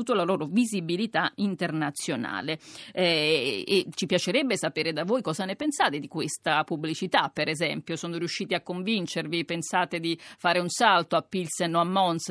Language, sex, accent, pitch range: Italian, female, native, 165-205 Hz